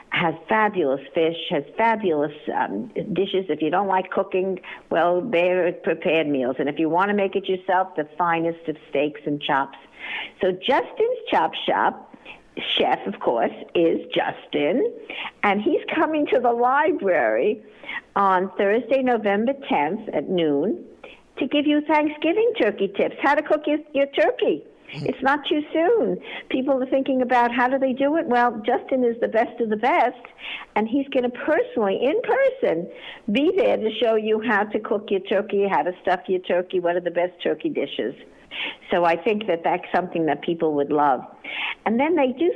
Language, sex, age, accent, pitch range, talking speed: English, female, 60-79, American, 185-275 Hz, 180 wpm